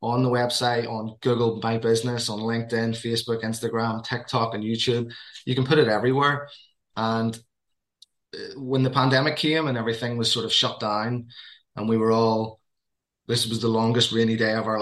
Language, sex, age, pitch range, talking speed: English, male, 20-39, 110-125 Hz, 175 wpm